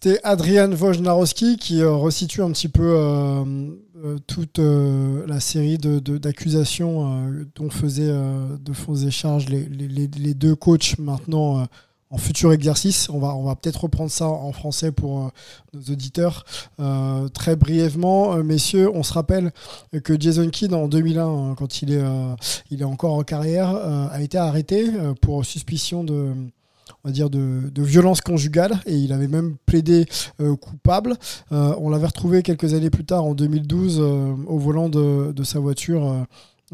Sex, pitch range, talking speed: male, 135-165 Hz, 175 wpm